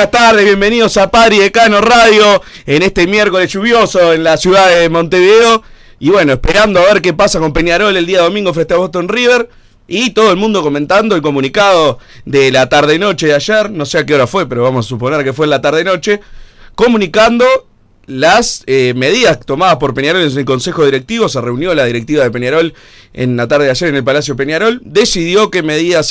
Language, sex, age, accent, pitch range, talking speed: Spanish, male, 30-49, Argentinian, 130-175 Hz, 205 wpm